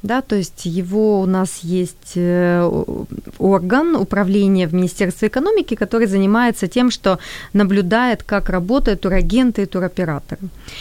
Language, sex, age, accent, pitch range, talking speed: Ukrainian, female, 30-49, native, 195-235 Hz, 115 wpm